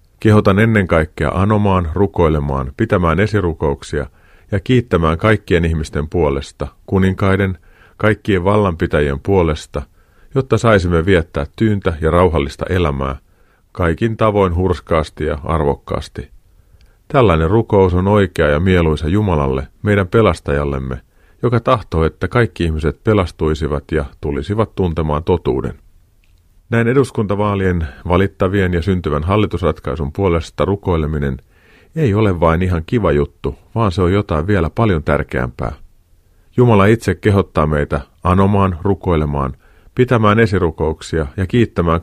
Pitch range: 80-100 Hz